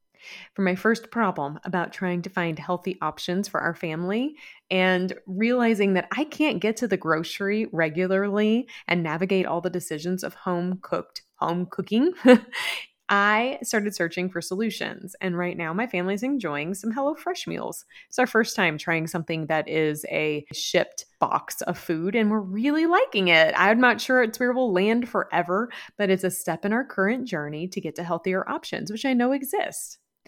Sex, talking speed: female, 175 wpm